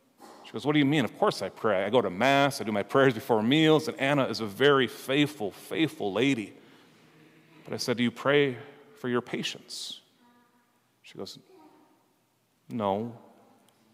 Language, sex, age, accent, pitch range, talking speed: English, male, 40-59, American, 110-140 Hz, 170 wpm